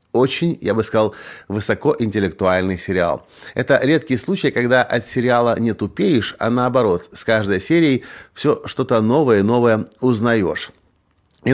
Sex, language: male, Russian